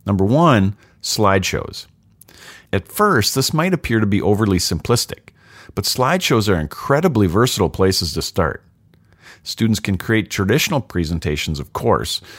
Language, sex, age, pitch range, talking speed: English, male, 50-69, 90-135 Hz, 130 wpm